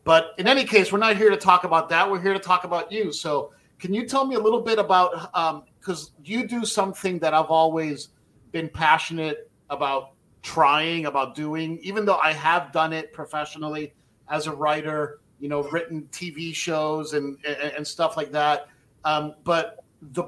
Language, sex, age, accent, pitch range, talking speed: English, male, 40-59, American, 150-180 Hz, 190 wpm